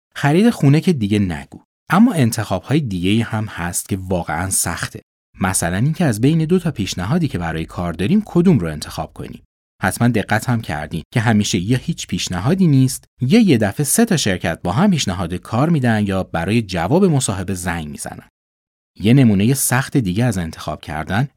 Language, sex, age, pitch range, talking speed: Persian, male, 30-49, 90-140 Hz, 175 wpm